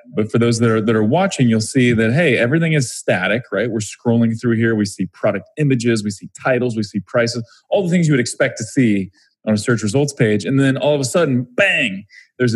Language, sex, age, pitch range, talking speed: English, male, 30-49, 105-130 Hz, 245 wpm